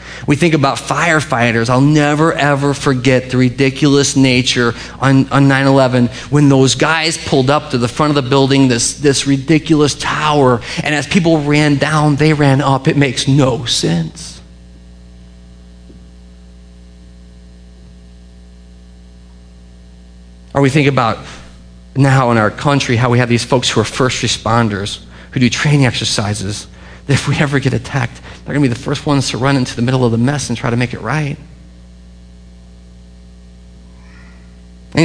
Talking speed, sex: 150 wpm, male